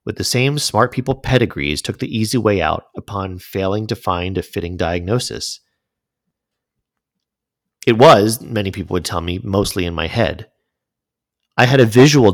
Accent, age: American, 40-59